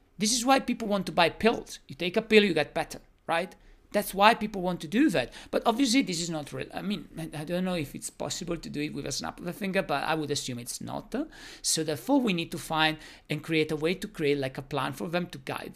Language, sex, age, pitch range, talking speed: English, male, 50-69, 145-215 Hz, 270 wpm